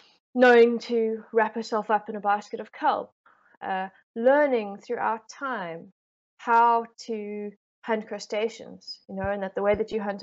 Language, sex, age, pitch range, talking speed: English, female, 20-39, 195-235 Hz, 155 wpm